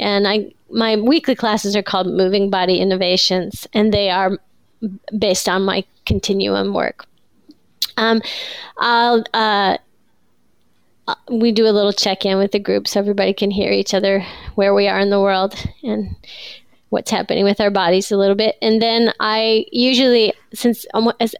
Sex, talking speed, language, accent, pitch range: female, 155 wpm, English, American, 190-215 Hz